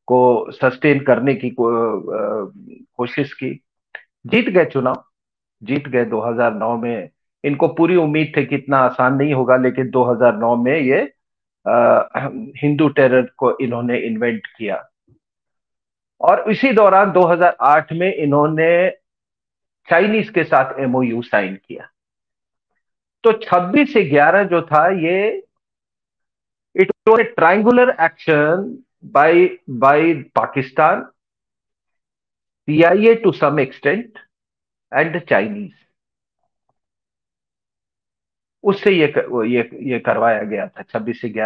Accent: Indian